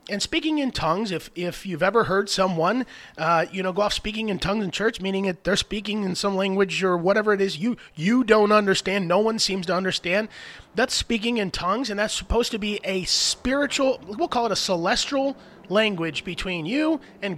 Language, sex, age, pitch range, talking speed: English, male, 30-49, 180-230 Hz, 205 wpm